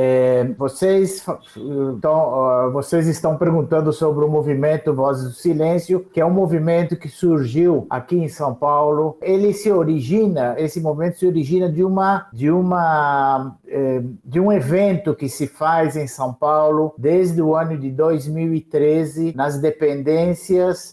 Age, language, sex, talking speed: 50-69, Portuguese, male, 145 wpm